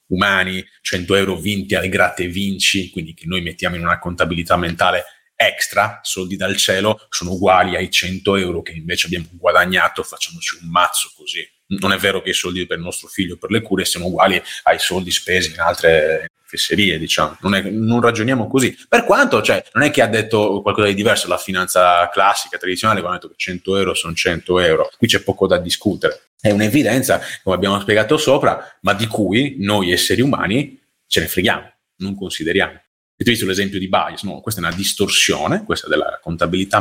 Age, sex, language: 30-49, male, Italian